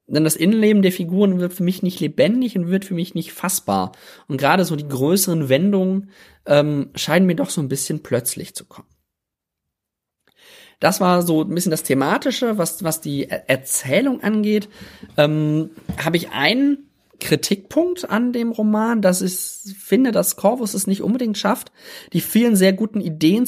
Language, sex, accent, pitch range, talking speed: German, male, German, 160-205 Hz, 170 wpm